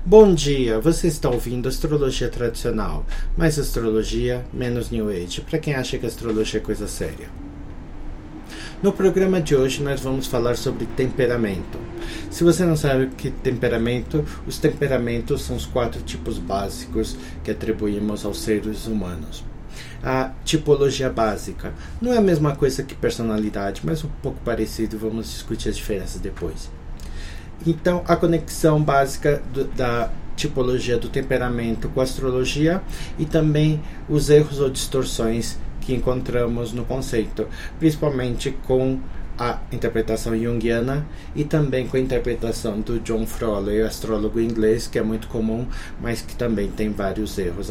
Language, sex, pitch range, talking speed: Portuguese, male, 110-140 Hz, 145 wpm